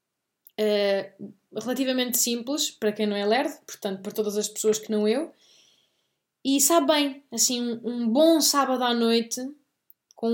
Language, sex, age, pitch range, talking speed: Portuguese, female, 20-39, 215-290 Hz, 150 wpm